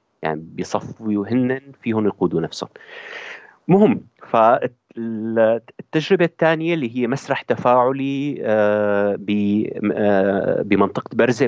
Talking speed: 80 wpm